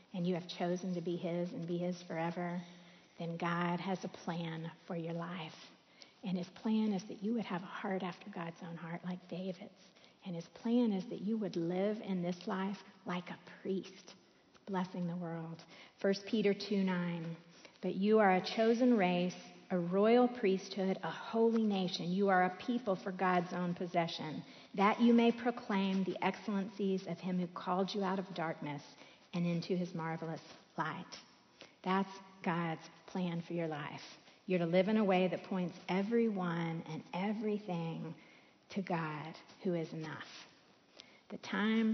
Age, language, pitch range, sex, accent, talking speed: 50-69, English, 175-195 Hz, female, American, 170 wpm